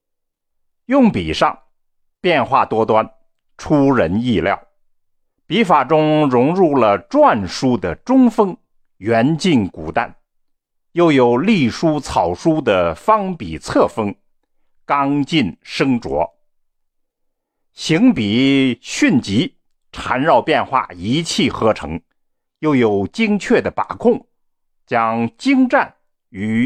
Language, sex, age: Chinese, male, 50-69